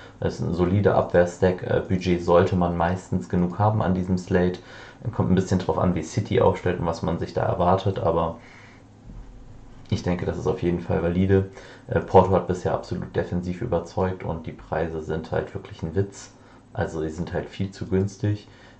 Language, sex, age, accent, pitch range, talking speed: German, male, 30-49, German, 85-105 Hz, 185 wpm